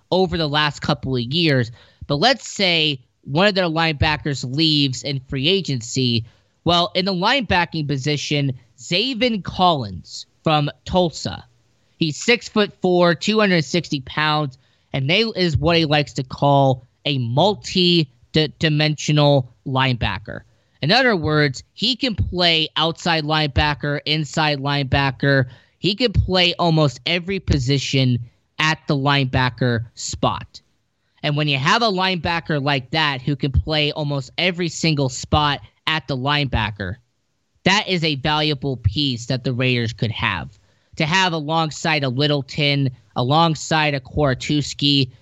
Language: English